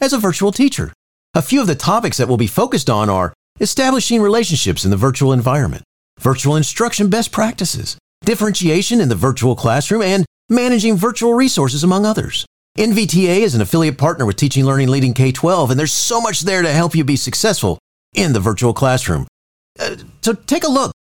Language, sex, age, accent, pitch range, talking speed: English, male, 40-59, American, 135-215 Hz, 185 wpm